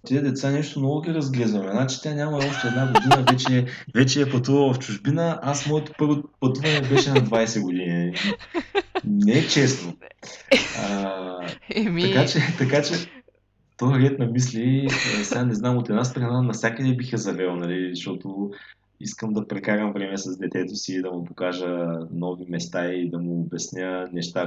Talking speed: 160 wpm